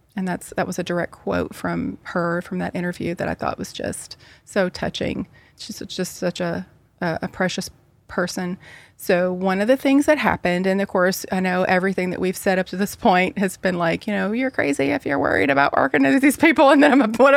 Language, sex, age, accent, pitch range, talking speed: English, female, 30-49, American, 175-205 Hz, 220 wpm